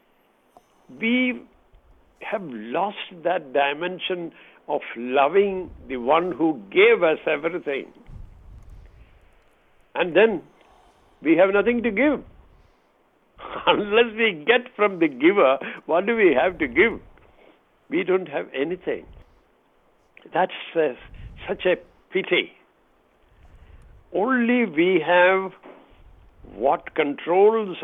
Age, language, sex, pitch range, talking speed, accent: 60-79, English, male, 160-230 Hz, 95 wpm, Indian